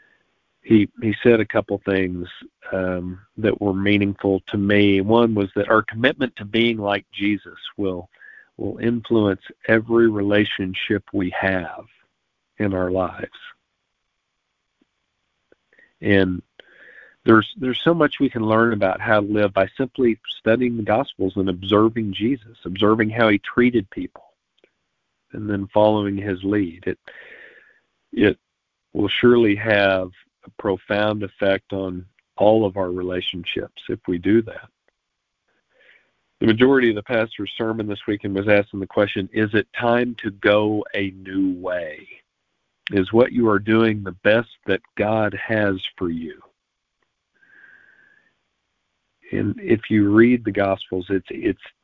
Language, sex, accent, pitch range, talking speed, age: English, male, American, 95-115 Hz, 135 wpm, 50-69